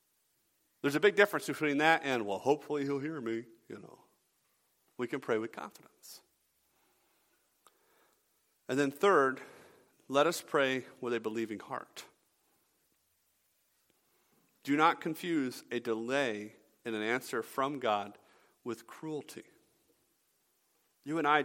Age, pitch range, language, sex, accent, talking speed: 50-69, 120-150 Hz, English, male, American, 125 wpm